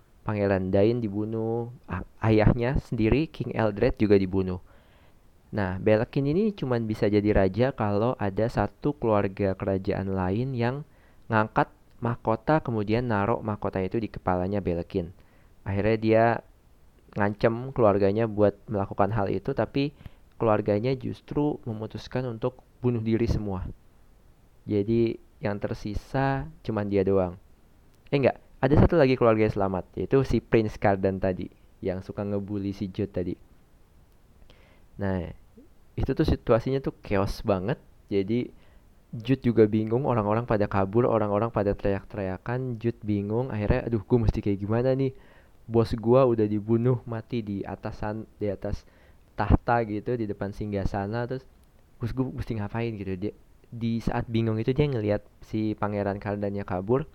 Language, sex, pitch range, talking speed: Indonesian, male, 100-120 Hz, 135 wpm